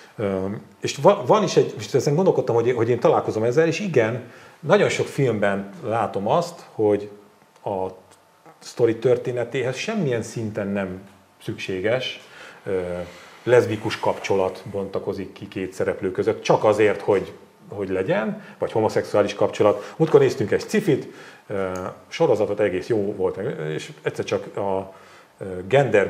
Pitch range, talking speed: 95-150 Hz, 140 wpm